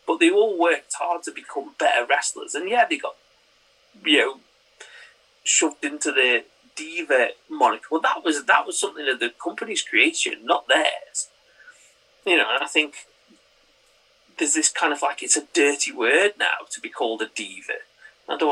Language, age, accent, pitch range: English, 30-49, British, 245-410 Hz